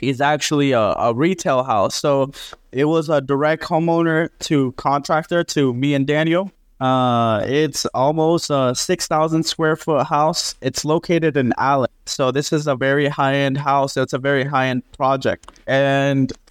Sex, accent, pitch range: male, American, 130-160 Hz